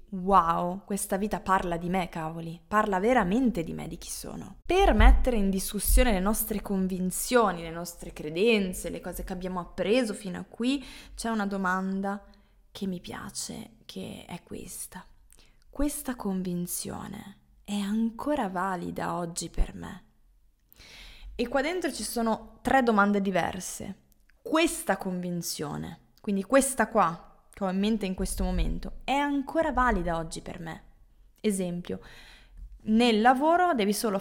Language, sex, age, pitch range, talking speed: Italian, female, 20-39, 185-240 Hz, 140 wpm